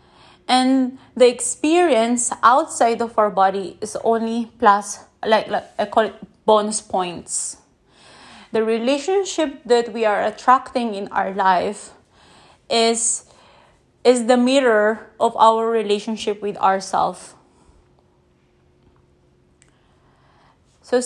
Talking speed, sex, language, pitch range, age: 105 wpm, female, English, 205-245 Hz, 20-39